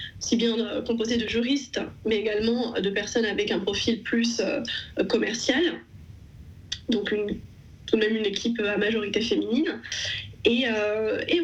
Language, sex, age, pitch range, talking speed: French, female, 20-39, 215-255 Hz, 130 wpm